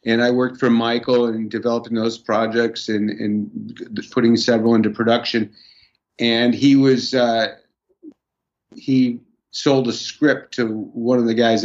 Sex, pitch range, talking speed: male, 105-120 Hz, 145 wpm